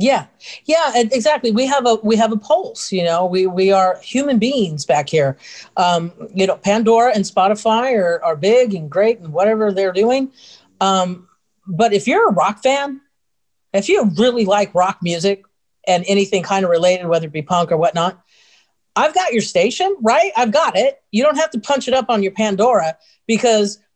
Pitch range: 185-240 Hz